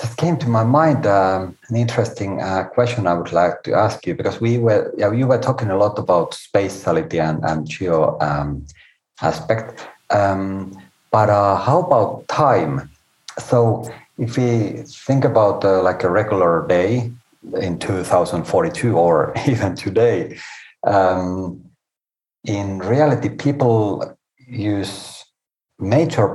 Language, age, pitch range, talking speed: English, 50-69, 85-120 Hz, 135 wpm